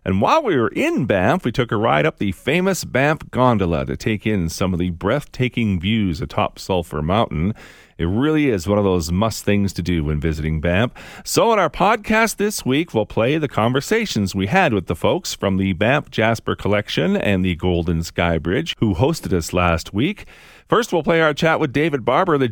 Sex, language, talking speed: male, English, 210 wpm